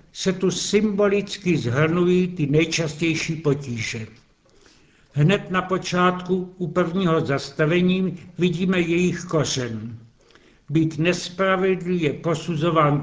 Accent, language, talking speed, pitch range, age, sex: native, Czech, 85 wpm, 155-180 Hz, 70-89, male